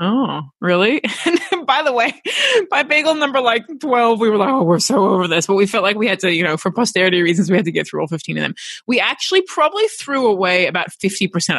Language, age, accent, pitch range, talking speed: English, 20-39, American, 175-240 Hz, 240 wpm